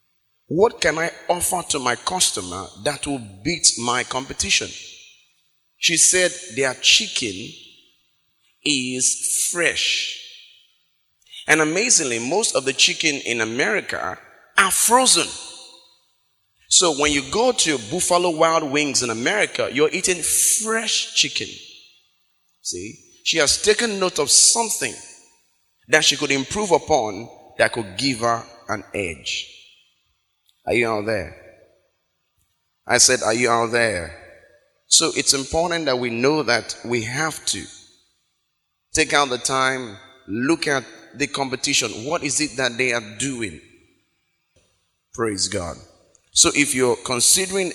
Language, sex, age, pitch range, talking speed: English, male, 30-49, 120-165 Hz, 125 wpm